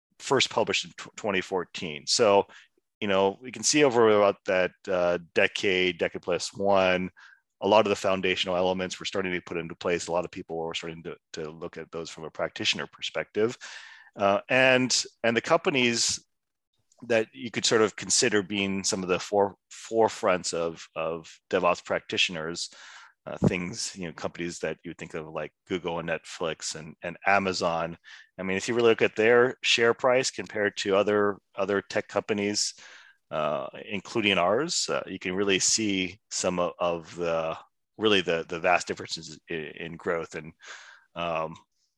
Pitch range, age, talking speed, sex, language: 90-110 Hz, 30-49, 175 wpm, male, English